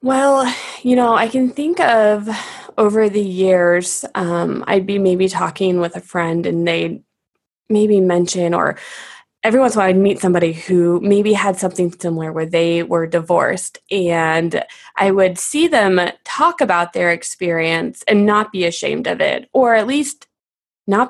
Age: 20-39